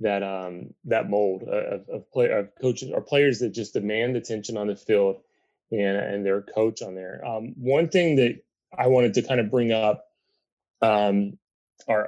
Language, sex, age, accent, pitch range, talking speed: English, male, 30-49, American, 105-130 Hz, 175 wpm